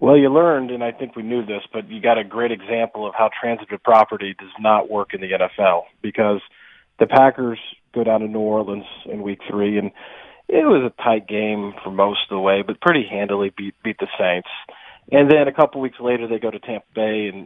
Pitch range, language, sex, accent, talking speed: 105-130 Hz, English, male, American, 225 wpm